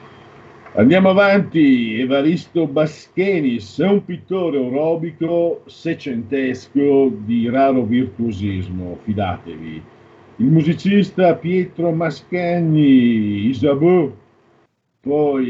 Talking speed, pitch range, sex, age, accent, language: 70 wpm, 120-165 Hz, male, 50-69, native, Italian